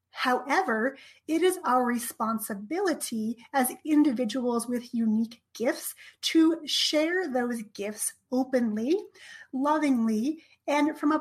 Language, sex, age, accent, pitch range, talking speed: English, female, 30-49, American, 235-290 Hz, 100 wpm